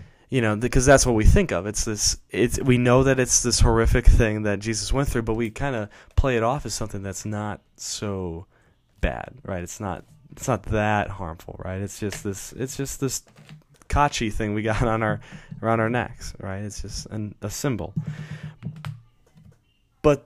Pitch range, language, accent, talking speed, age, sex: 105-125 Hz, English, American, 195 wpm, 20-39, male